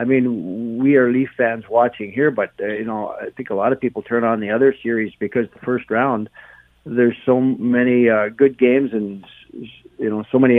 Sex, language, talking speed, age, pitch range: male, English, 215 wpm, 60-79, 105-125 Hz